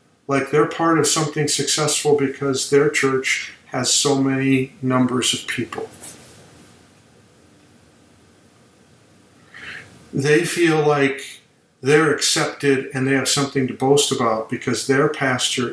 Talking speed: 115 wpm